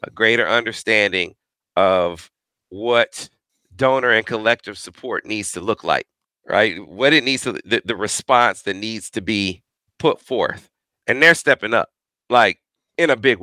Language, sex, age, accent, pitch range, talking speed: English, male, 40-59, American, 125-175 Hz, 155 wpm